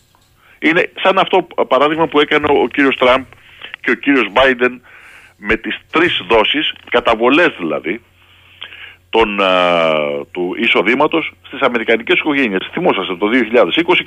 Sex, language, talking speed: male, Greek, 115 wpm